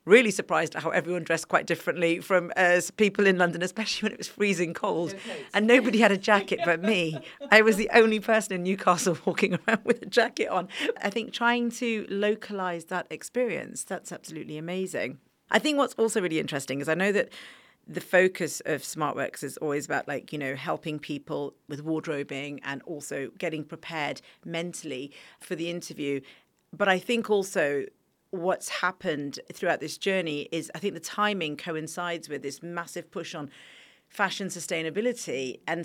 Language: English